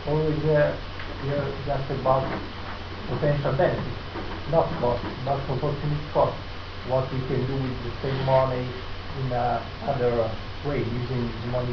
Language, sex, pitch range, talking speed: Italian, male, 110-135 Hz, 145 wpm